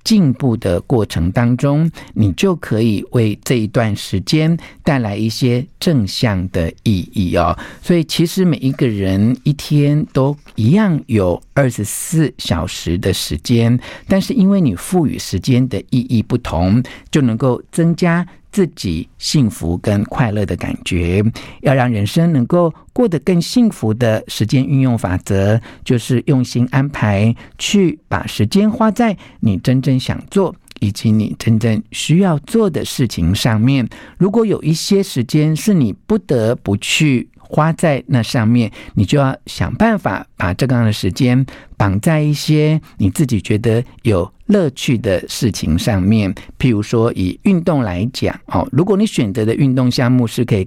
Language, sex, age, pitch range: Chinese, male, 50-69, 110-155 Hz